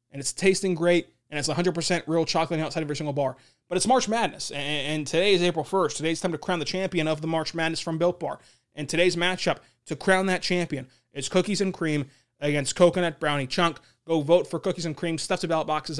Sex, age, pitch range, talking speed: male, 20-39, 145-175 Hz, 235 wpm